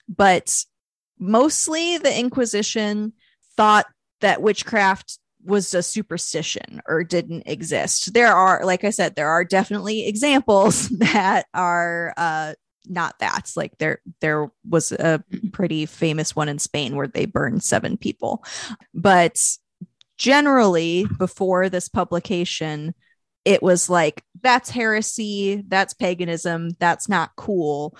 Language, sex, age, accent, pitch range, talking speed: English, female, 30-49, American, 175-215 Hz, 120 wpm